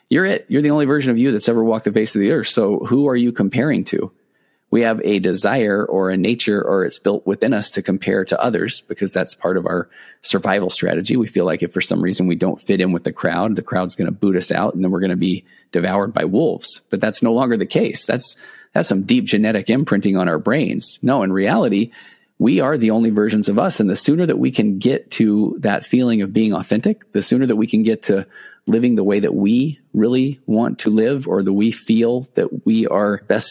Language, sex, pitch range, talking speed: English, male, 95-120 Hz, 245 wpm